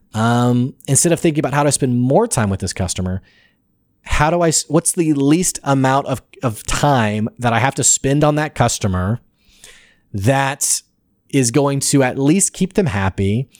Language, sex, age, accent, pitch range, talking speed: English, male, 30-49, American, 105-140 Hz, 175 wpm